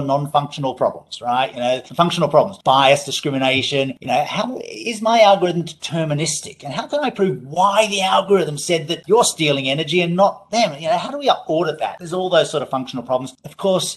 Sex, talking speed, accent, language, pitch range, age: male, 205 wpm, Australian, English, 130-165 Hz, 40-59